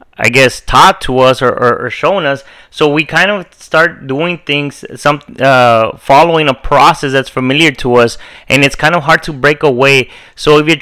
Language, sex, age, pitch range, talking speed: English, male, 30-49, 135-165 Hz, 205 wpm